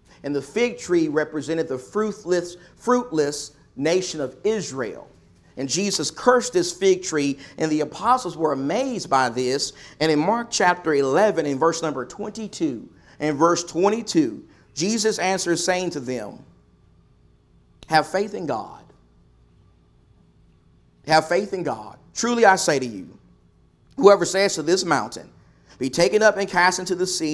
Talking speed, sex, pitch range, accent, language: 145 wpm, male, 140-200 Hz, American, English